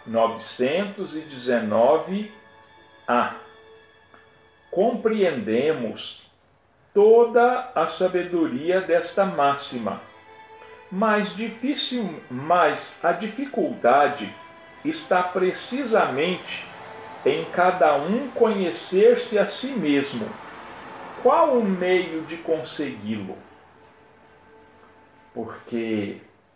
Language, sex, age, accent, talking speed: Portuguese, male, 50-69, Brazilian, 60 wpm